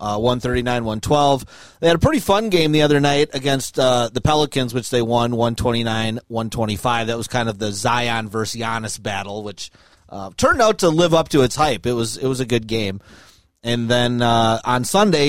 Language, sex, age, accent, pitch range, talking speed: English, male, 30-49, American, 120-155 Hz, 195 wpm